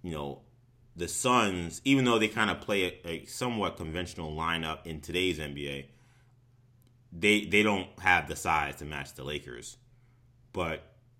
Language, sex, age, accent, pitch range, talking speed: English, male, 20-39, American, 80-120 Hz, 155 wpm